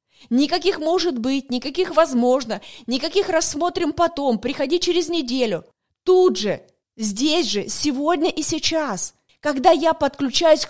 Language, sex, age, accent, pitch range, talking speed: Russian, female, 30-49, native, 260-325 Hz, 120 wpm